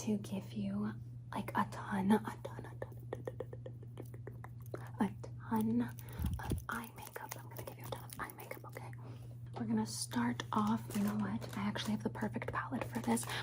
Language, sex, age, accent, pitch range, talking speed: English, female, 20-39, American, 115-125 Hz, 190 wpm